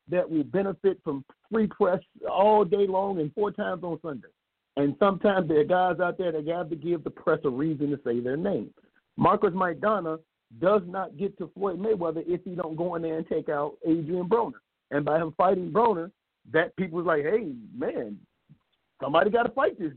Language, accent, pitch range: English, American, 155-200 Hz